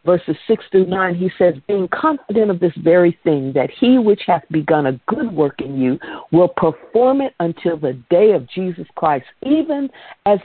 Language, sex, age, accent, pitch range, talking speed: English, female, 50-69, American, 170-225 Hz, 190 wpm